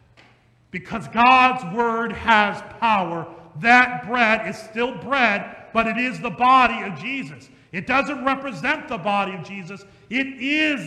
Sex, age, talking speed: male, 40-59, 145 wpm